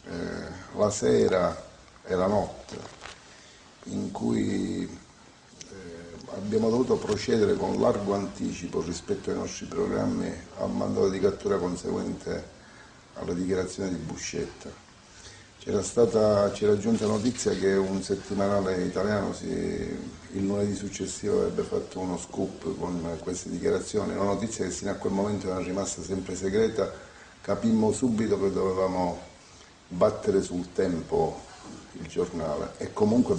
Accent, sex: native, male